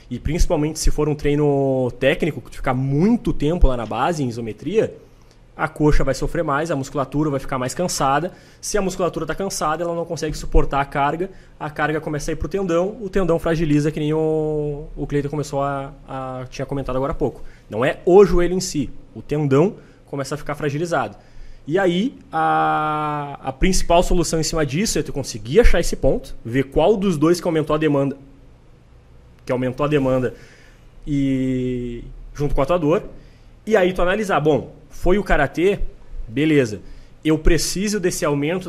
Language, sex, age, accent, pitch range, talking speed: Portuguese, male, 20-39, Brazilian, 130-165 Hz, 185 wpm